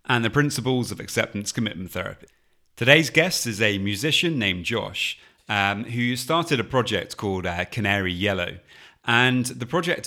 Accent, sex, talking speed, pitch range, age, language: British, male, 155 wpm, 95-125 Hz, 30-49, English